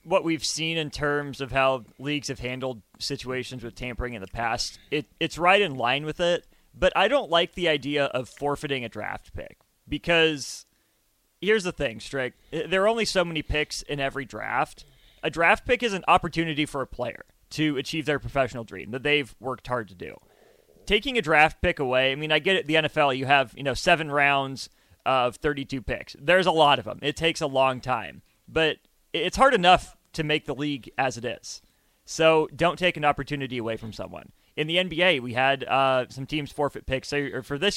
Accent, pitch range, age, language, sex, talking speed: American, 130-165 Hz, 30-49, English, male, 210 wpm